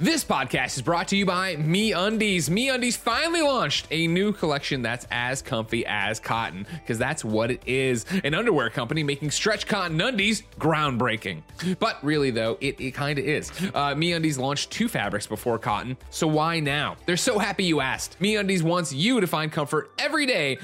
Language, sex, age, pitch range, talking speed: English, male, 20-39, 115-170 Hz, 190 wpm